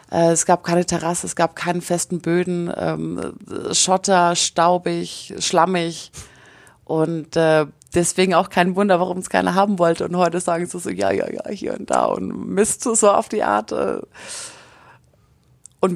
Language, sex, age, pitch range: German, female, 30-49, 175-210 Hz